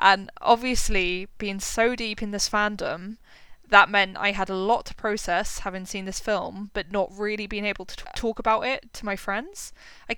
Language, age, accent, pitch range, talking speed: English, 10-29, British, 190-220 Hz, 200 wpm